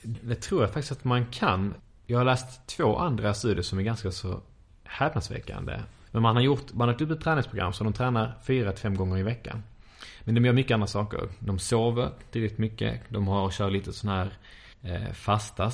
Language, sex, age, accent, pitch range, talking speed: Swedish, male, 20-39, Norwegian, 100-120 Hz, 195 wpm